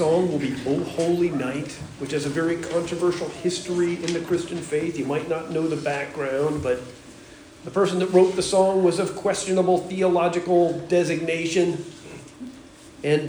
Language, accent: English, American